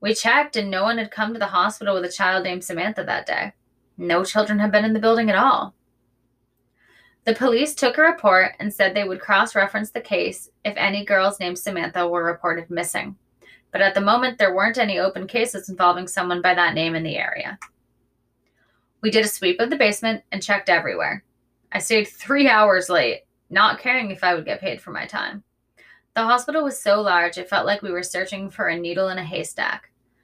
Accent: American